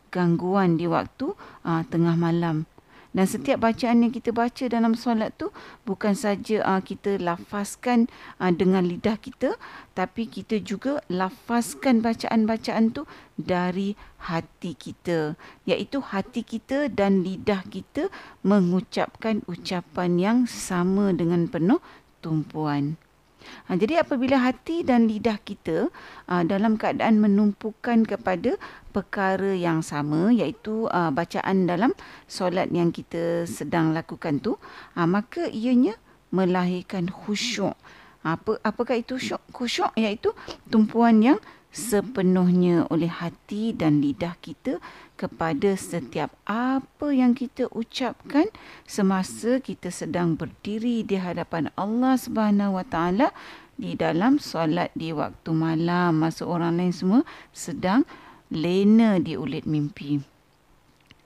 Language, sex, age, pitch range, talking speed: Malay, female, 40-59, 175-235 Hz, 115 wpm